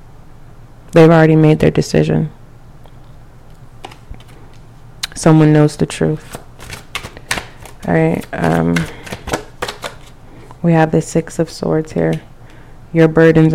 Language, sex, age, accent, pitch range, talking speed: English, female, 20-39, American, 130-165 Hz, 90 wpm